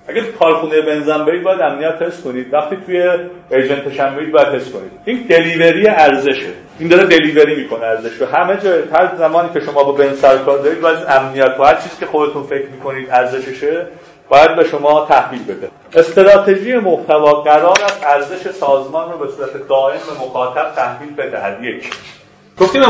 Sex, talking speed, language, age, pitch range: male, 160 wpm, Persian, 30-49, 135-185 Hz